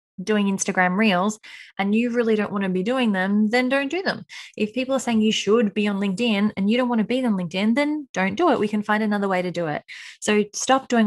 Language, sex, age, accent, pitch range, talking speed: English, female, 20-39, Australian, 185-240 Hz, 260 wpm